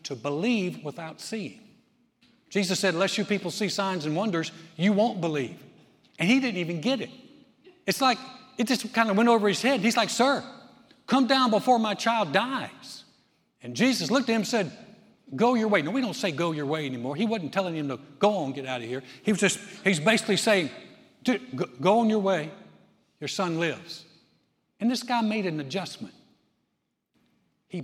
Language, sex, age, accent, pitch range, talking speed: English, male, 60-79, American, 170-240 Hz, 195 wpm